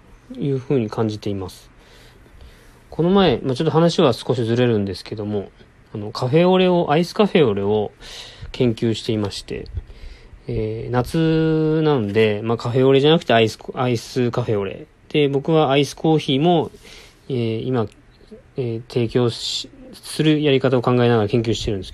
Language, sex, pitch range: Japanese, male, 115-165 Hz